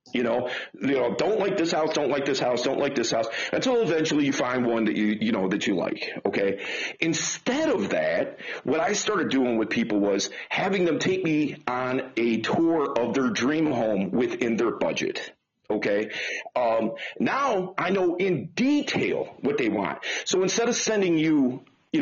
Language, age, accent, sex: English, 40-59, American, male